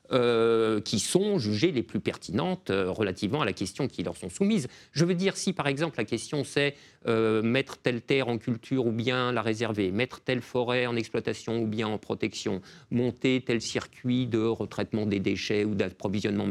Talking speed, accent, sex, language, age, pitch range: 195 wpm, French, male, French, 50-69, 110-175 Hz